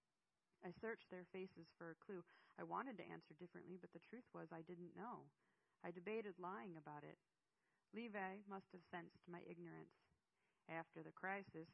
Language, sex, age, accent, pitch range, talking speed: English, female, 30-49, American, 160-185 Hz, 170 wpm